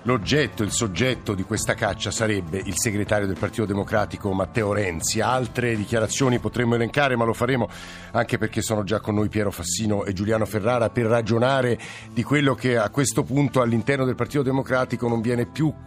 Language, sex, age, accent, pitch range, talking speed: Italian, male, 50-69, native, 105-130 Hz, 180 wpm